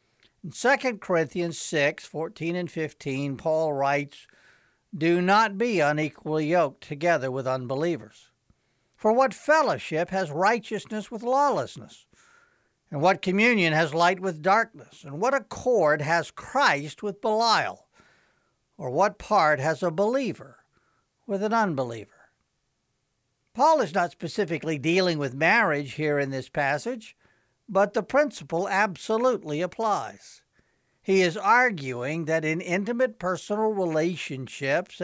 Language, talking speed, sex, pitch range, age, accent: English, 120 wpm, male, 150-215 Hz, 60-79, American